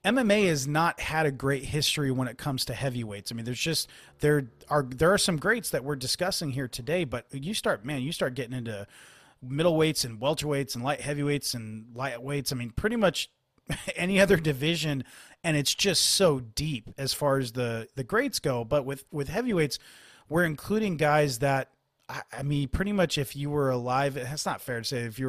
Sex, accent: male, American